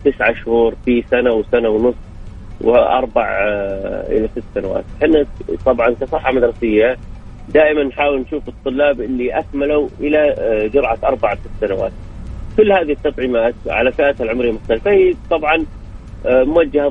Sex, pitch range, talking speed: male, 110-145 Hz, 130 wpm